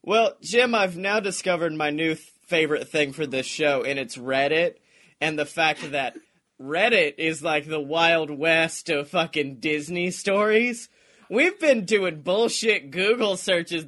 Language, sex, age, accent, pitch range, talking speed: English, male, 30-49, American, 175-245 Hz, 150 wpm